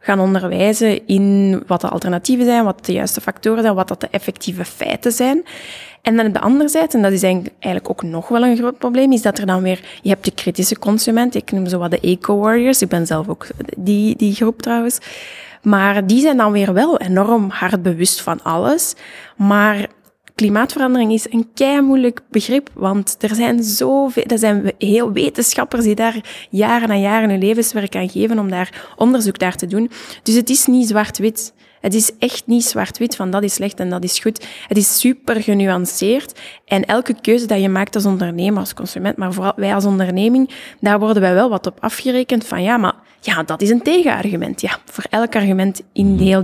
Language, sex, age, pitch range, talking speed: Dutch, female, 20-39, 190-235 Hz, 205 wpm